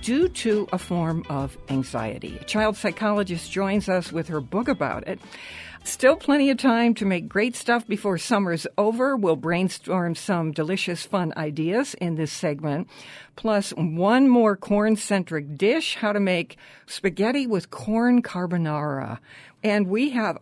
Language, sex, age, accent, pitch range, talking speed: English, female, 60-79, American, 165-220 Hz, 150 wpm